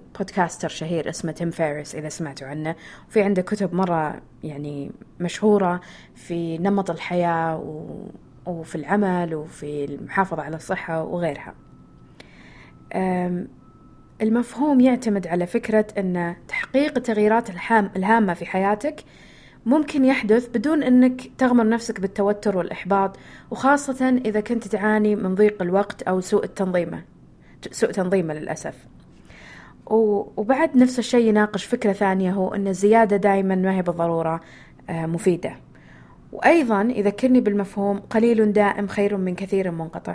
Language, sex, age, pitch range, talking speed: Arabic, female, 20-39, 170-220 Hz, 120 wpm